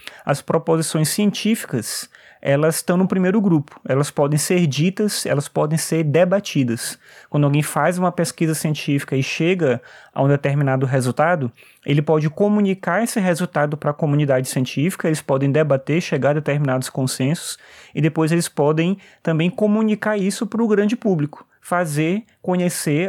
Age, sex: 20-39, male